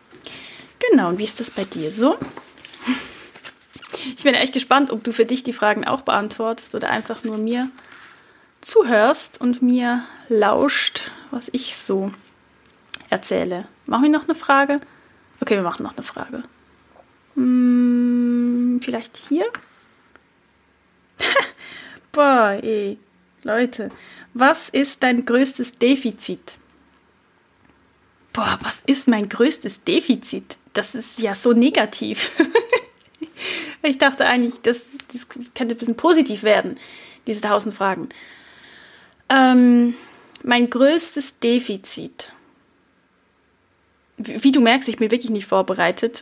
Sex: female